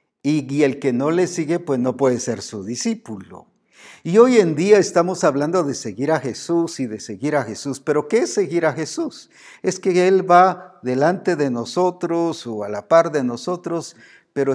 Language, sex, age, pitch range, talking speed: Spanish, male, 50-69, 130-180 Hz, 195 wpm